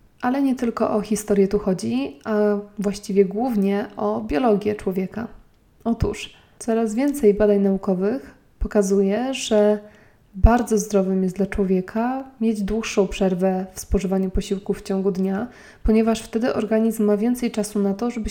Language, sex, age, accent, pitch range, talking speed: Polish, female, 20-39, native, 195-220 Hz, 140 wpm